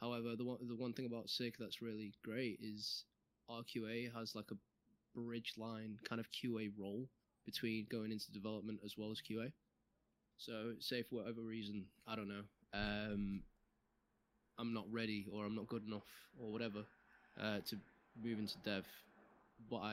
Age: 20-39